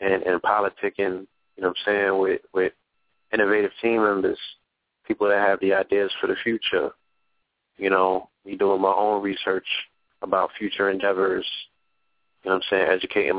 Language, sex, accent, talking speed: English, male, American, 170 wpm